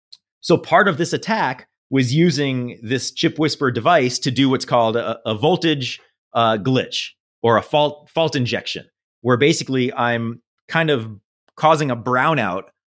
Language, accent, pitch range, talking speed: English, American, 115-155 Hz, 155 wpm